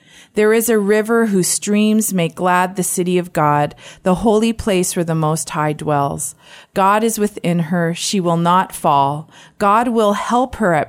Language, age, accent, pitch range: English, 40-59, American, 165-215 Hz